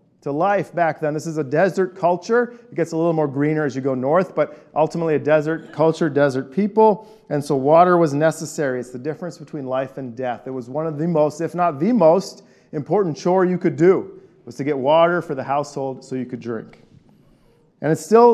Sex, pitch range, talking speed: male, 140-175 Hz, 215 wpm